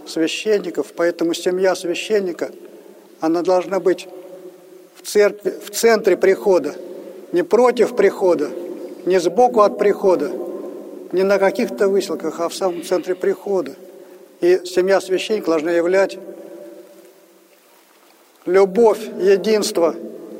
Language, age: Russian, 50-69